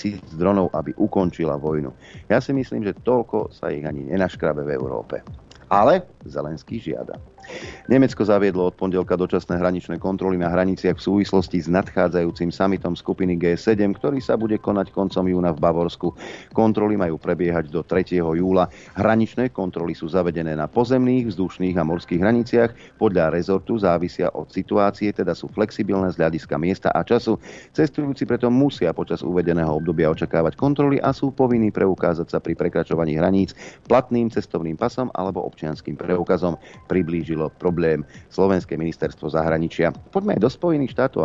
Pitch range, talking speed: 85-110 Hz, 150 wpm